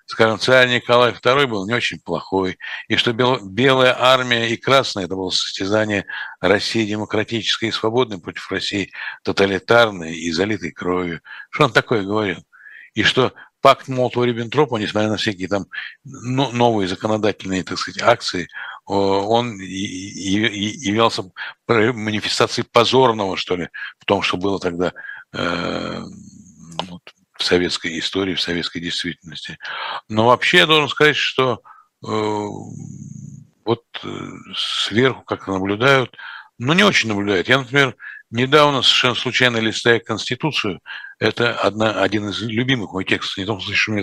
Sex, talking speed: male, 130 wpm